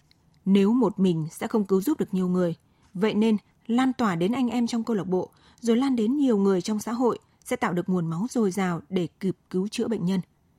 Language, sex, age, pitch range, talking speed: Vietnamese, female, 20-39, 180-230 Hz, 240 wpm